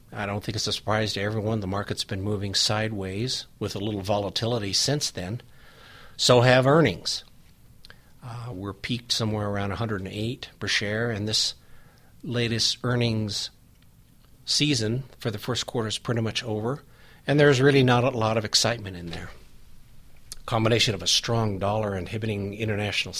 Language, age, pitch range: English, 50-69, 105-125 Hz